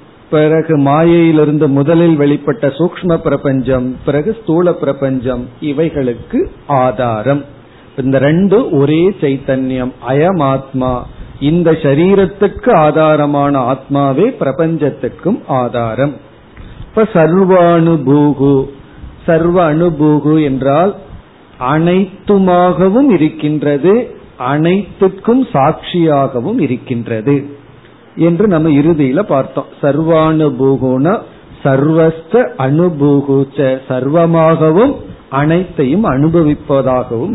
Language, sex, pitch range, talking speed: Tamil, male, 130-165 Hz, 65 wpm